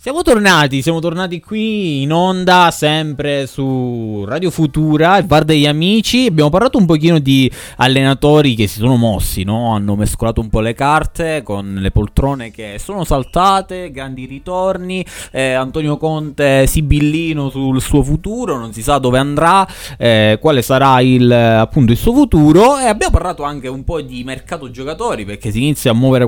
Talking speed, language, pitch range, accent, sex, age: 170 wpm, Italian, 110-150 Hz, native, male, 20-39